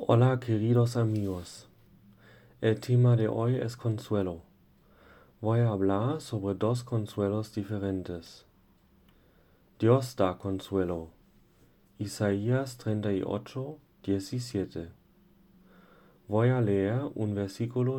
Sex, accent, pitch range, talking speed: male, German, 95-115 Hz, 90 wpm